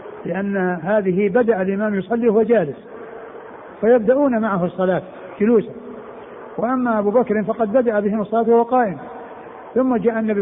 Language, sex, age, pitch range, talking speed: Arabic, male, 60-79, 195-235 Hz, 140 wpm